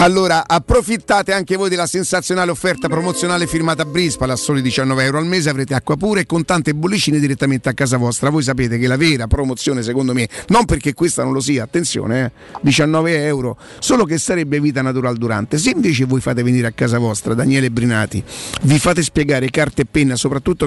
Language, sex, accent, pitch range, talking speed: Italian, male, native, 130-165 Hz, 200 wpm